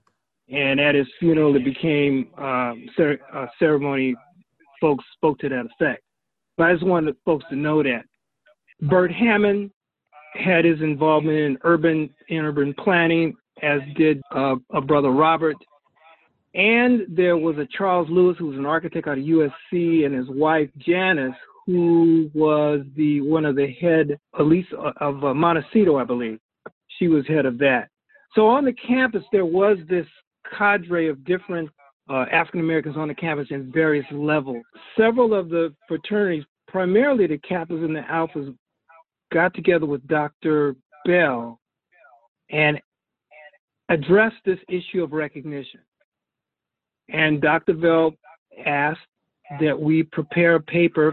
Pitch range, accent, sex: 145-175 Hz, American, male